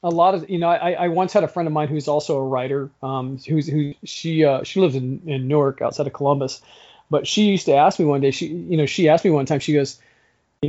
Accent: American